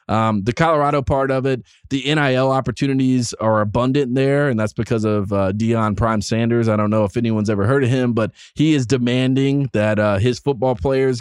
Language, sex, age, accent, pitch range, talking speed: English, male, 20-39, American, 110-135 Hz, 205 wpm